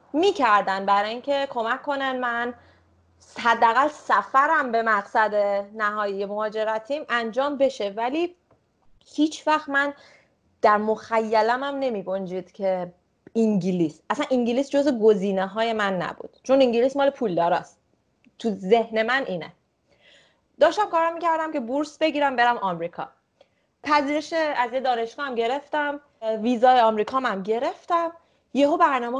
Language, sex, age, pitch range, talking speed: Persian, female, 30-49, 215-290 Hz, 120 wpm